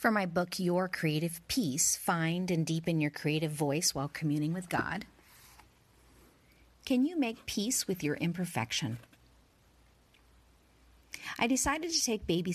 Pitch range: 145-185 Hz